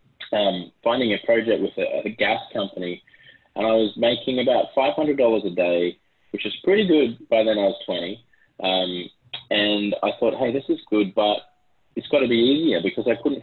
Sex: male